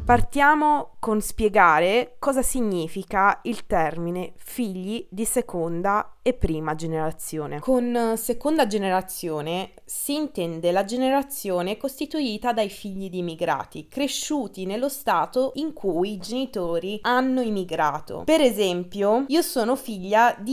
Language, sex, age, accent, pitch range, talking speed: Italian, female, 20-39, native, 180-240 Hz, 115 wpm